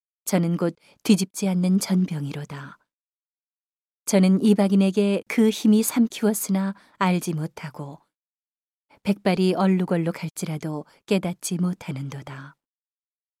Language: Korean